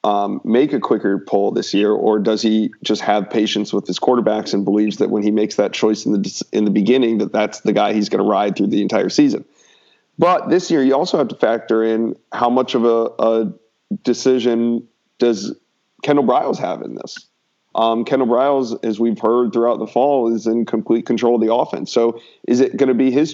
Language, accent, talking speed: English, American, 220 wpm